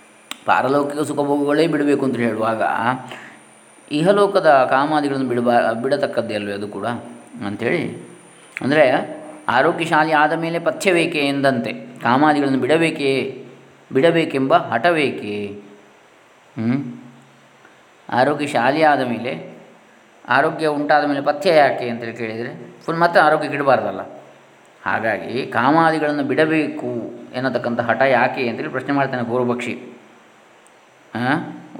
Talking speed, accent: 95 wpm, native